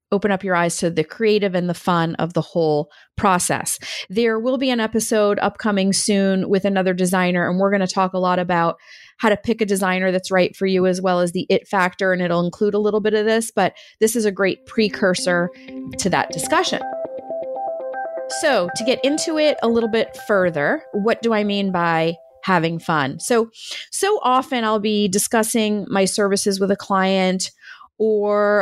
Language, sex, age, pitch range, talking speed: English, female, 30-49, 185-225 Hz, 195 wpm